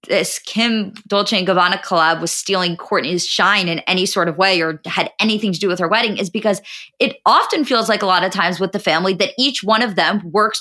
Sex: female